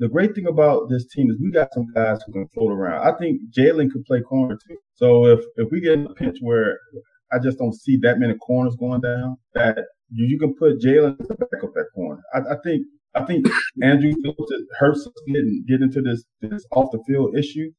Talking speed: 225 wpm